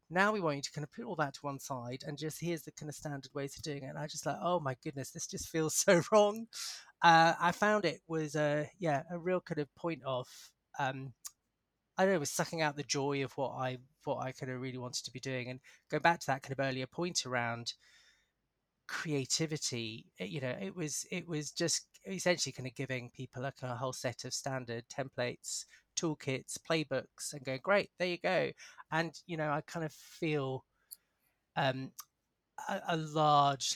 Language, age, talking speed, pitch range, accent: English, 30-49, 210 wpm, 125-155 Hz, British